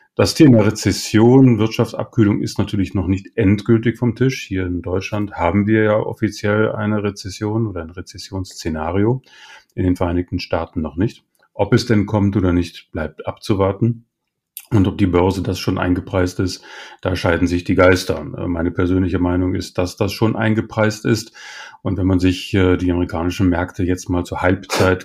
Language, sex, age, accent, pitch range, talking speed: German, male, 30-49, German, 90-110 Hz, 170 wpm